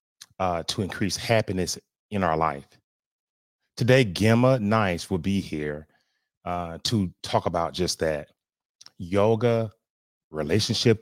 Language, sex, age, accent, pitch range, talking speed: English, male, 30-49, American, 85-115 Hz, 115 wpm